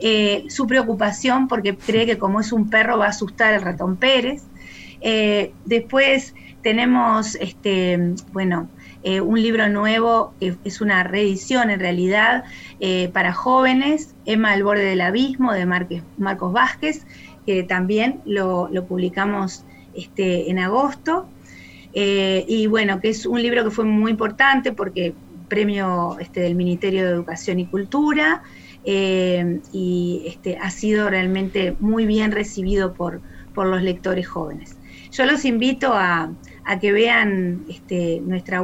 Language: Spanish